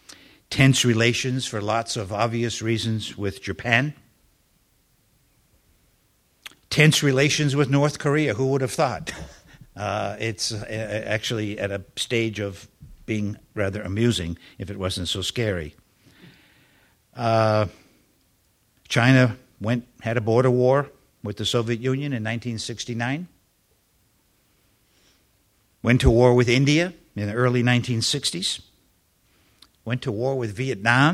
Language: English